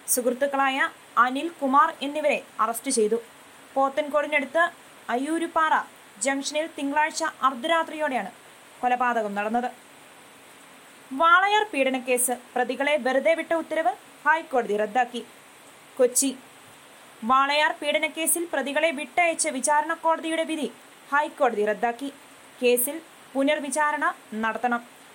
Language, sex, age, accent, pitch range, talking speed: Malayalam, female, 20-39, native, 250-320 Hz, 80 wpm